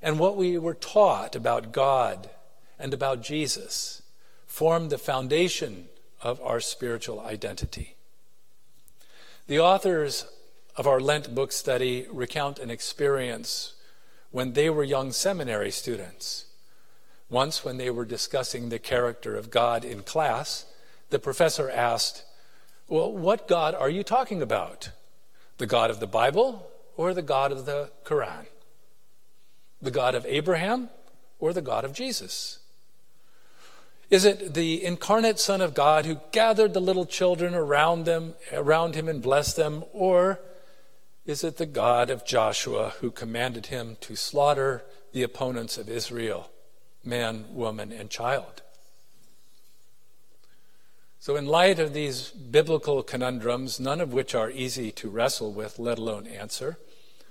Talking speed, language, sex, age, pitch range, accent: 135 wpm, English, male, 50-69, 125-180 Hz, American